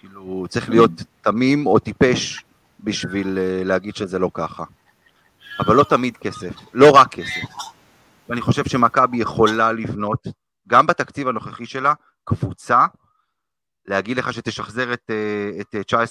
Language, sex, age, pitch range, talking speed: Hebrew, male, 30-49, 100-135 Hz, 125 wpm